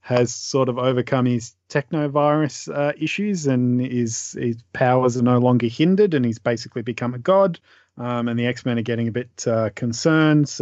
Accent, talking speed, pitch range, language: Australian, 185 wpm, 120-135 Hz, English